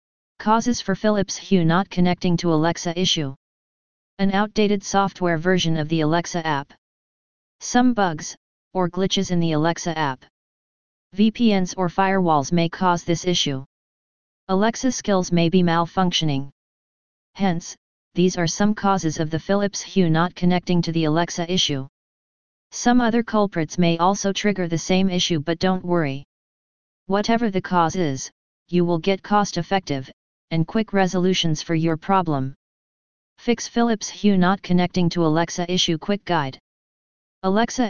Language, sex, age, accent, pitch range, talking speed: English, female, 30-49, American, 165-195 Hz, 140 wpm